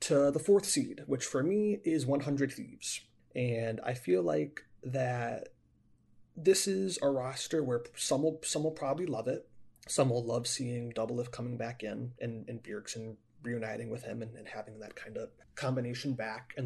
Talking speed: 180 wpm